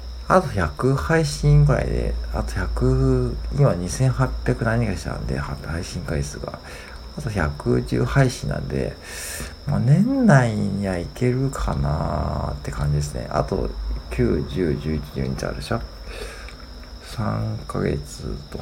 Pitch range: 70-110 Hz